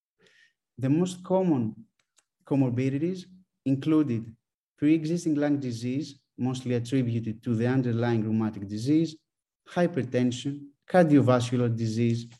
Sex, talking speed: male, 90 wpm